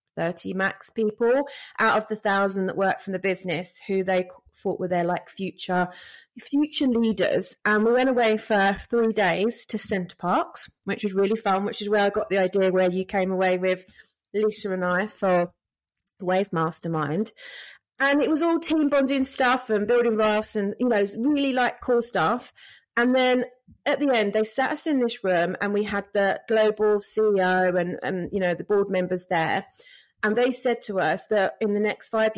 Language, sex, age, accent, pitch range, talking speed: English, female, 30-49, British, 190-245 Hz, 195 wpm